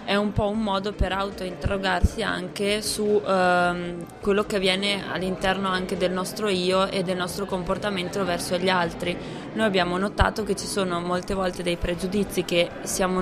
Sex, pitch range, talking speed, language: female, 175-195 Hz, 170 wpm, Italian